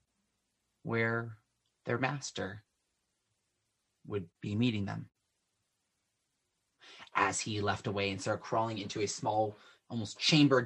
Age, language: 30-49, English